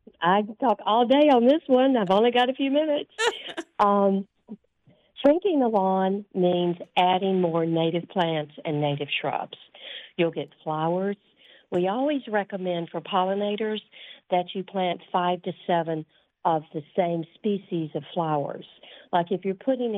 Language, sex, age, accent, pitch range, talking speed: English, female, 50-69, American, 160-195 Hz, 150 wpm